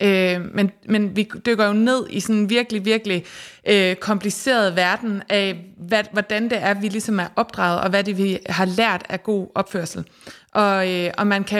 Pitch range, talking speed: 180-215 Hz, 175 wpm